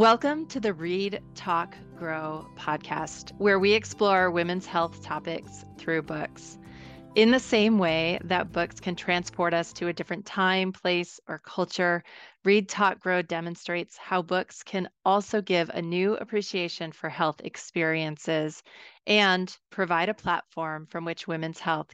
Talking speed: 150 wpm